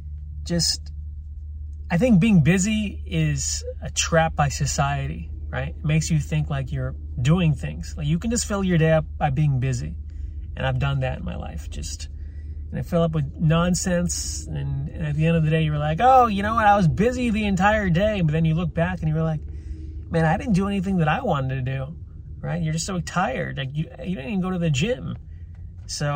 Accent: American